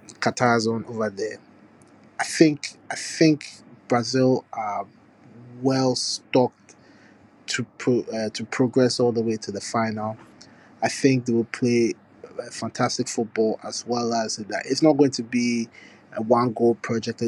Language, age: English, 20-39